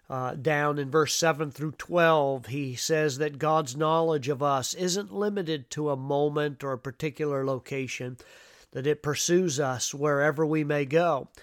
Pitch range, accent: 135-160 Hz, American